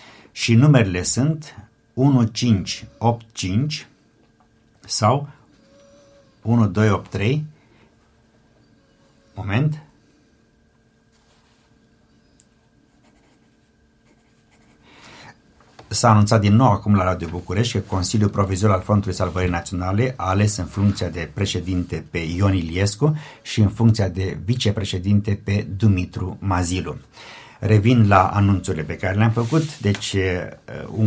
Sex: male